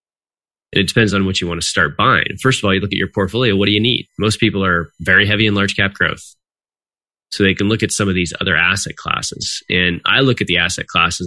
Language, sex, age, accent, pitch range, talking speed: English, male, 20-39, American, 90-115 Hz, 255 wpm